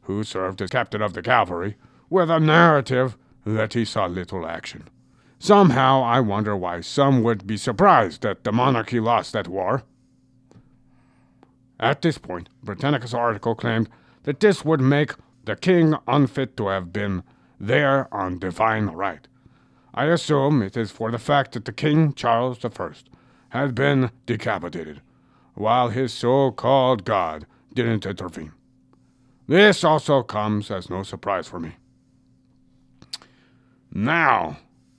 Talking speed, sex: 135 wpm, male